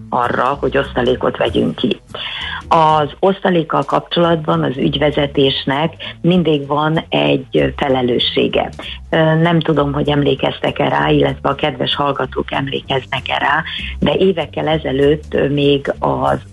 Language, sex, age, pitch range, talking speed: Hungarian, female, 50-69, 120-155 Hz, 110 wpm